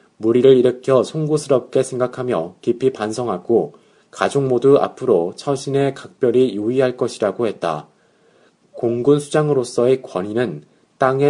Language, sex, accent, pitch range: Korean, male, native, 115-140 Hz